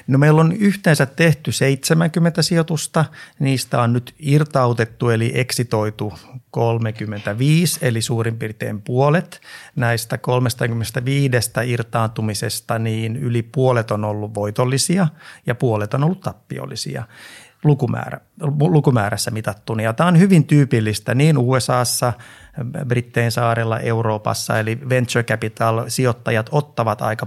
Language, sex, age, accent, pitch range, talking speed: Finnish, male, 30-49, native, 115-140 Hz, 110 wpm